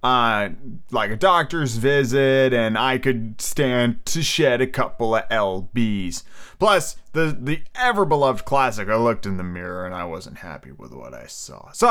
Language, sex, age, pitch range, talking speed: English, male, 30-49, 110-145 Hz, 175 wpm